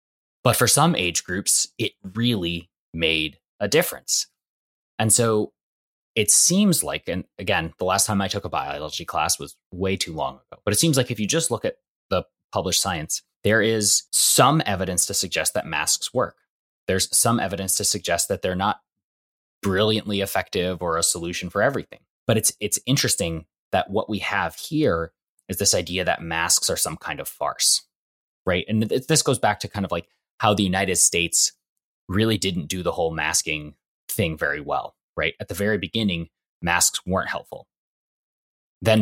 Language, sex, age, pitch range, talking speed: English, male, 20-39, 90-110 Hz, 180 wpm